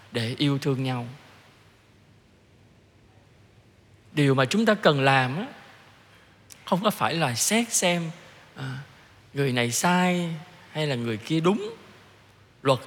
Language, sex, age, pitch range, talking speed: Vietnamese, male, 20-39, 120-180 Hz, 115 wpm